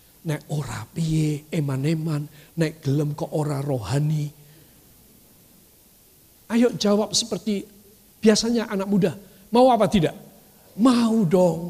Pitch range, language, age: 150-245 Hz, Indonesian, 50-69